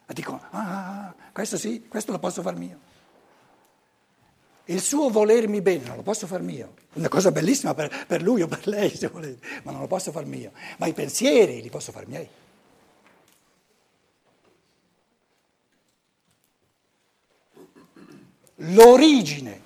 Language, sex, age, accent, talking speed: Italian, male, 60-79, native, 130 wpm